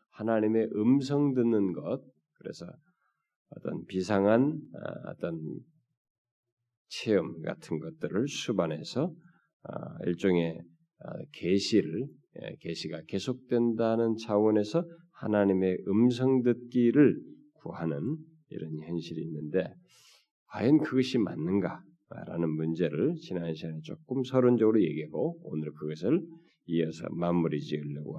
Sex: male